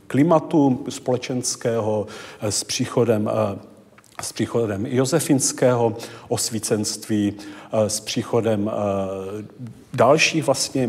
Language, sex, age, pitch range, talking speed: Czech, male, 40-59, 110-130 Hz, 65 wpm